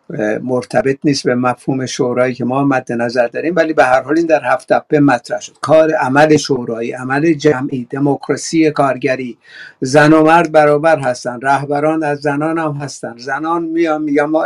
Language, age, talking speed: Persian, 60-79, 170 wpm